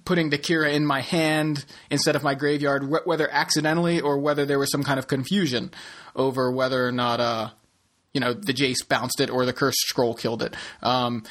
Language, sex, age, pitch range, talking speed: English, male, 30-49, 130-150 Hz, 205 wpm